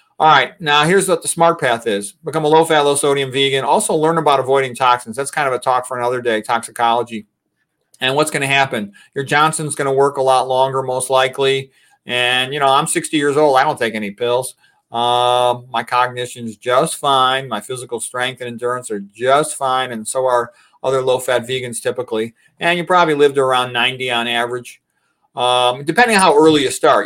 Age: 40-59